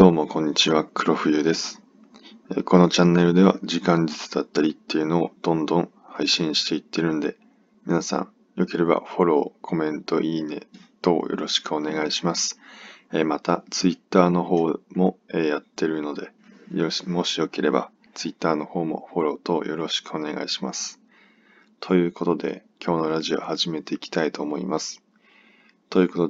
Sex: male